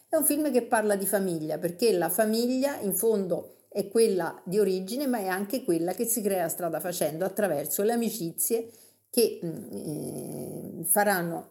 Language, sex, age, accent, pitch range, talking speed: Italian, female, 50-69, native, 170-230 Hz, 165 wpm